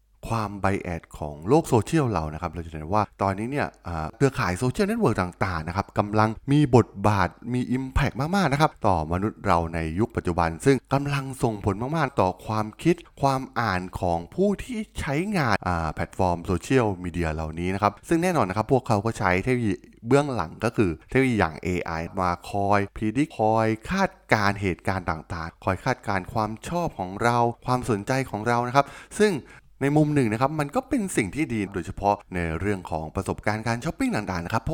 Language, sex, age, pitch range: Thai, male, 20-39, 90-135 Hz